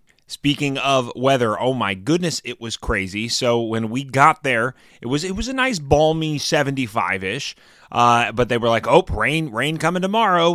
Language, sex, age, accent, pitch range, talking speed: English, male, 30-49, American, 115-165 Hz, 195 wpm